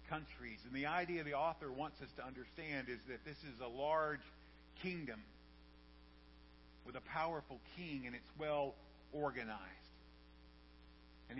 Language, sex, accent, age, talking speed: English, male, American, 50-69, 135 wpm